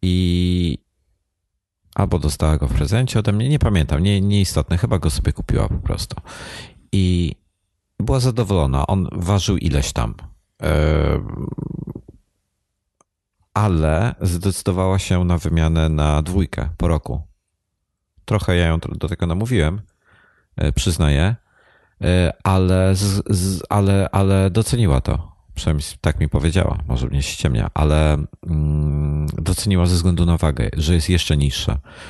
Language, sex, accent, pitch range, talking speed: Polish, male, native, 75-95 Hz, 120 wpm